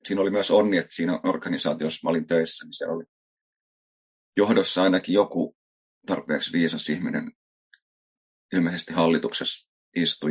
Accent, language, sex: native, Finnish, male